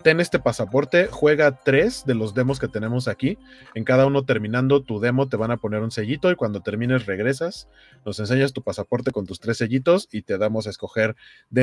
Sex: male